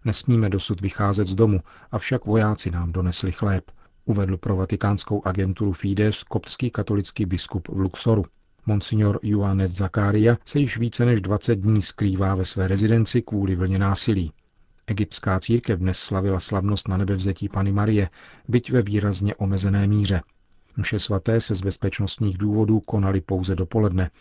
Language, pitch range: Czech, 95-105 Hz